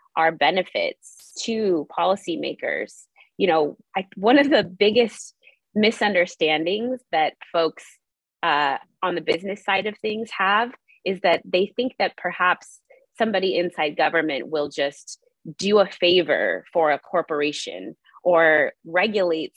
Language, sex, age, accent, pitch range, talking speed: English, female, 20-39, American, 160-210 Hz, 125 wpm